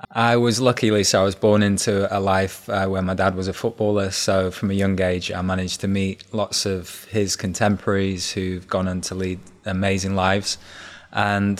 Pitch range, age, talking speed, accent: 95-105 Hz, 20-39, 195 wpm, British